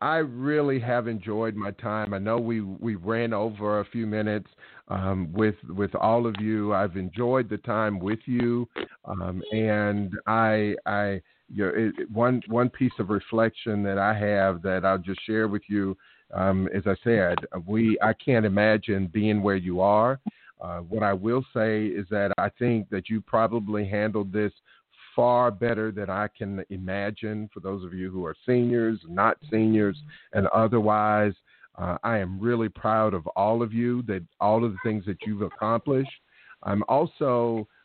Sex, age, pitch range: male, 50-69, 100-115 Hz